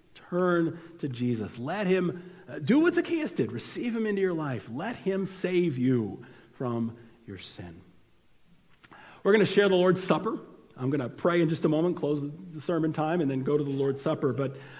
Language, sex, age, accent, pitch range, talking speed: English, male, 40-59, American, 125-180 Hz, 195 wpm